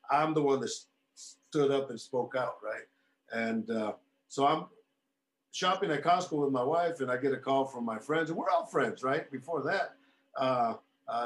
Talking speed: 190 wpm